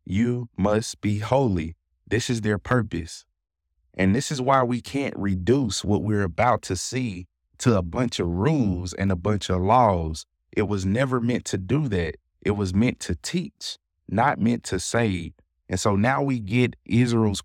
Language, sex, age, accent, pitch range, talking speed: English, male, 30-49, American, 90-120 Hz, 180 wpm